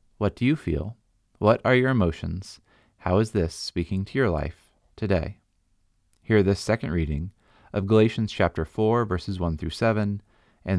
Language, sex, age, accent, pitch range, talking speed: English, male, 30-49, American, 90-110 Hz, 160 wpm